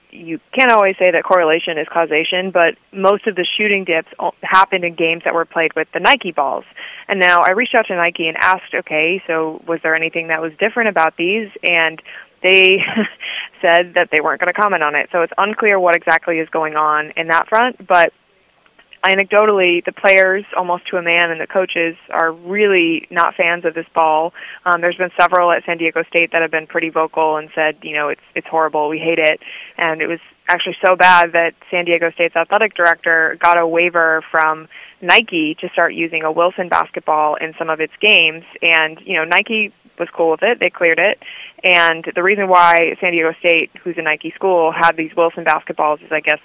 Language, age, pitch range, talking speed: English, 20-39, 160-190 Hz, 210 wpm